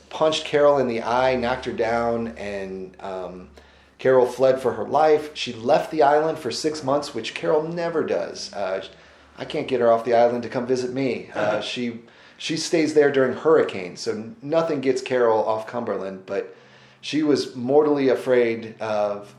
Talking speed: 175 wpm